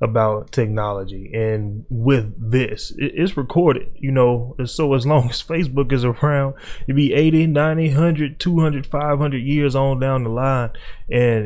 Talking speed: 155 wpm